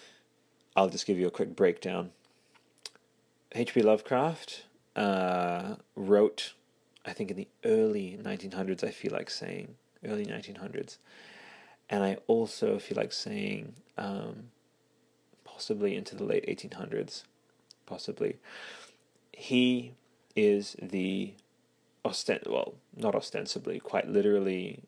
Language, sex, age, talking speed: English, male, 30-49, 110 wpm